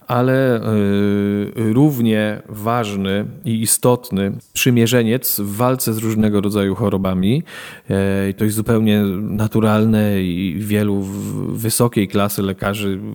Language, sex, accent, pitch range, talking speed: Polish, male, native, 100-120 Hz, 95 wpm